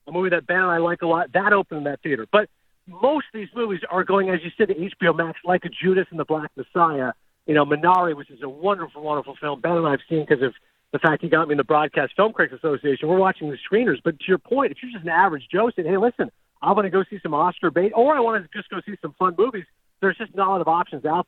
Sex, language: male, English